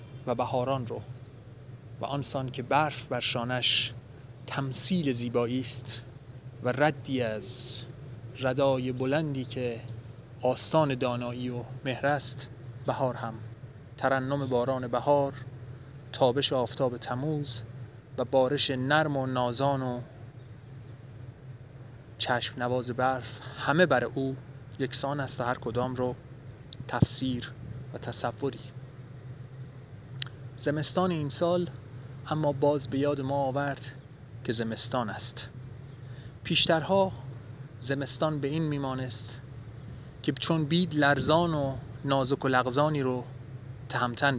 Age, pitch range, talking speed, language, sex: 30-49, 125-135 Hz, 105 wpm, Persian, male